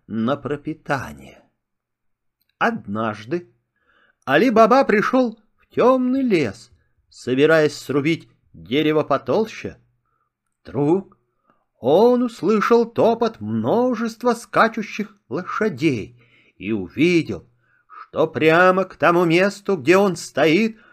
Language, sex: Russian, male